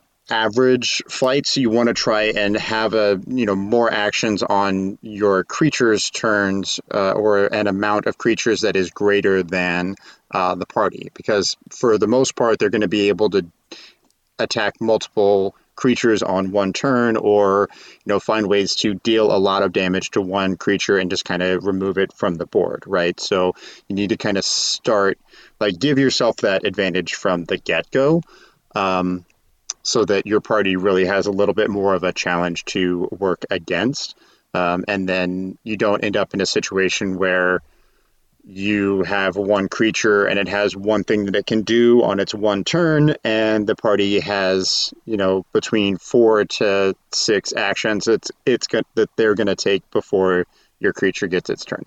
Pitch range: 95-110 Hz